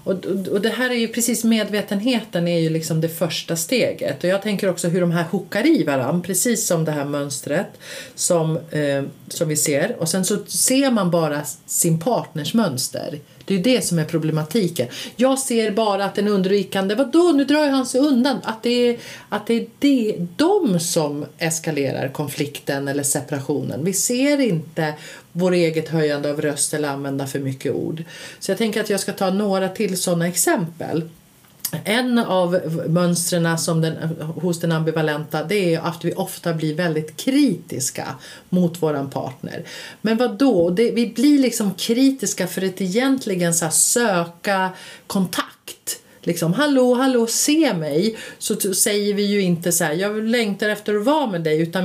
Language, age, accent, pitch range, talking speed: Swedish, 40-59, native, 160-225 Hz, 165 wpm